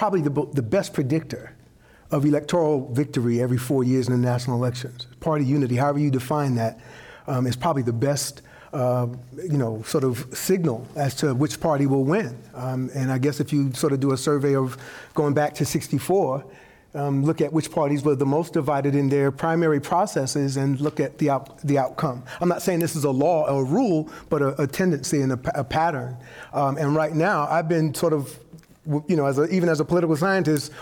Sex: male